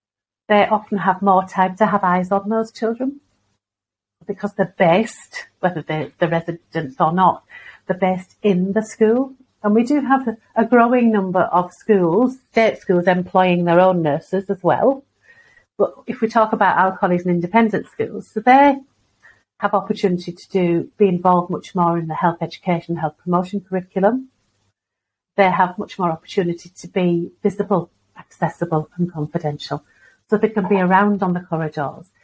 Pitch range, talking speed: 170-205 Hz, 165 wpm